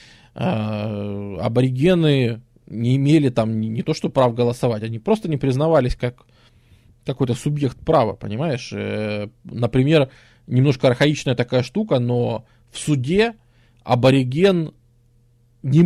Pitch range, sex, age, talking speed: 120-145 Hz, male, 20-39, 105 wpm